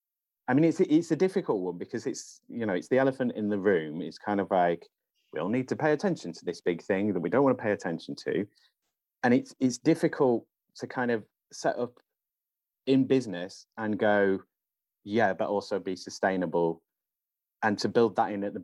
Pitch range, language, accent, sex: 100-120 Hz, English, British, male